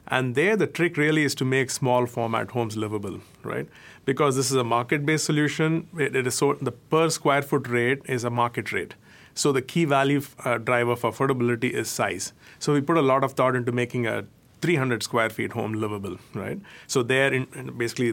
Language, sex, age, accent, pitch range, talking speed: English, male, 30-49, Indian, 120-140 Hz, 170 wpm